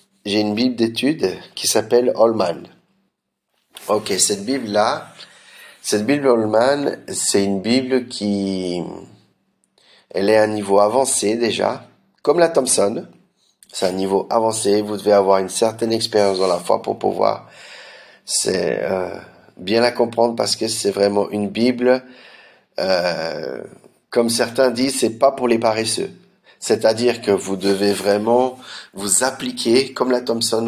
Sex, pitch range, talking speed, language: male, 105-120 Hz, 140 wpm, French